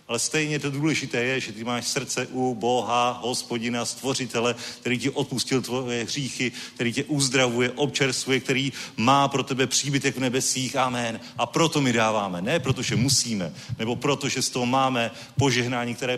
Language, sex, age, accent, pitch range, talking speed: Czech, male, 40-59, native, 115-135 Hz, 165 wpm